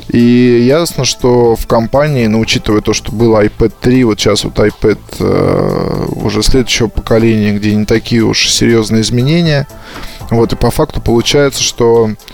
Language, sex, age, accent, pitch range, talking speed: Russian, male, 20-39, native, 105-125 Hz, 160 wpm